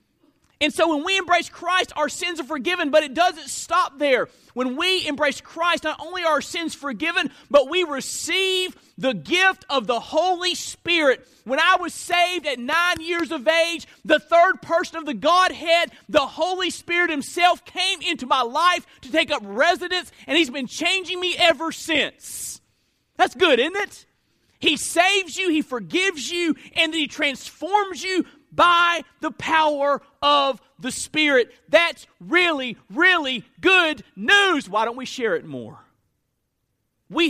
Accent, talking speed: American, 160 wpm